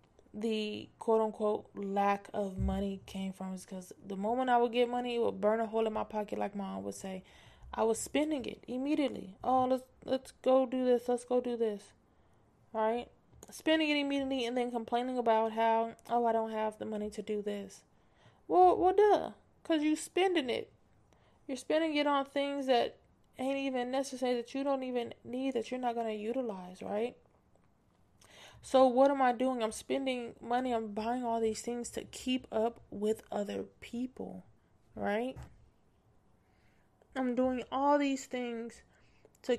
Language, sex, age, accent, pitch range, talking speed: English, female, 20-39, American, 205-250 Hz, 175 wpm